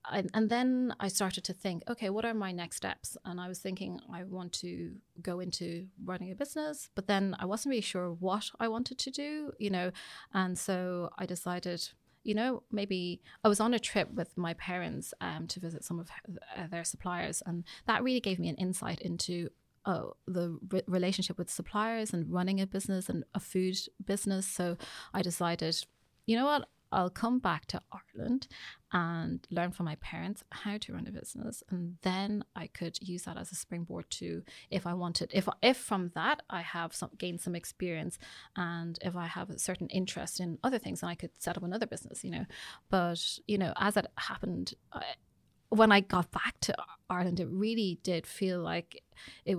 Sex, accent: female, British